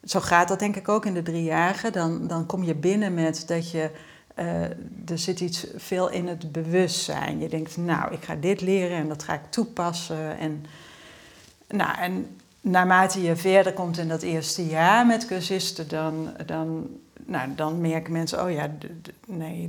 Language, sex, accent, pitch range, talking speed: Dutch, female, Dutch, 155-190 Hz, 185 wpm